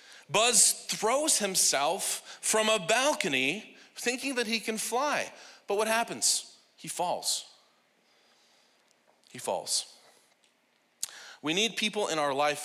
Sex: male